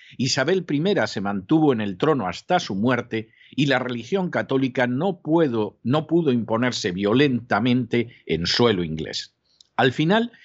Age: 50-69